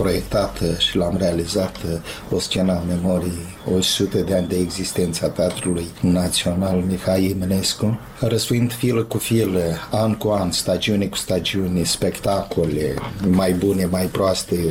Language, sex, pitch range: Romanian, male, 90-105 Hz